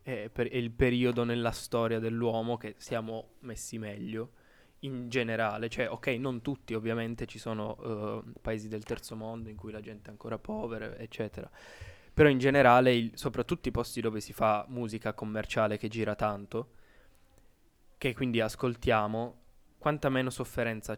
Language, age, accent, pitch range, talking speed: Italian, 10-29, native, 110-125 Hz, 155 wpm